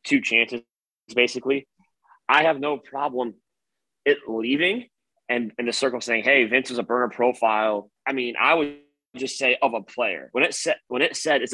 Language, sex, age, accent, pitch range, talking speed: English, male, 20-39, American, 120-145 Hz, 185 wpm